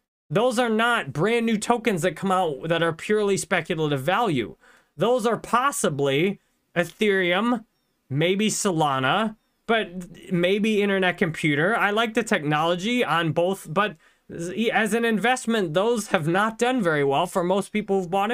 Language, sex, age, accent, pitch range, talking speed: English, male, 20-39, American, 165-210 Hz, 145 wpm